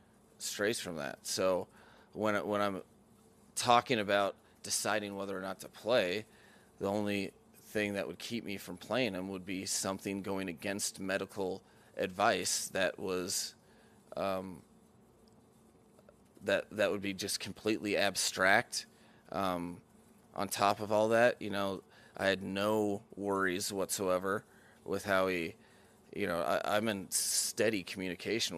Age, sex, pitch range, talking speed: 30-49, male, 95-105 Hz, 140 wpm